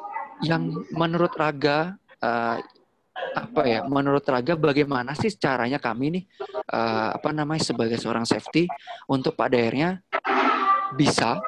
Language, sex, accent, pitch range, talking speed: Indonesian, male, native, 135-190 Hz, 115 wpm